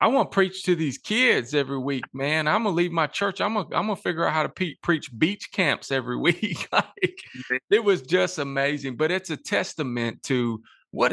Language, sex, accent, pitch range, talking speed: English, male, American, 110-135 Hz, 205 wpm